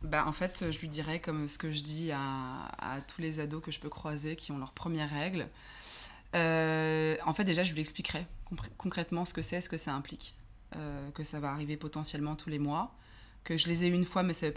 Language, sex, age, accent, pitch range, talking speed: French, female, 20-39, French, 145-175 Hz, 245 wpm